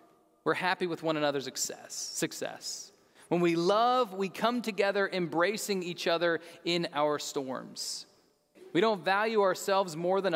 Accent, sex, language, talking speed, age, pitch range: American, male, Russian, 140 wpm, 30-49, 155-195 Hz